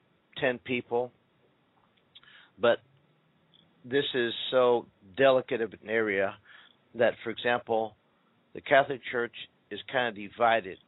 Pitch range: 110-125 Hz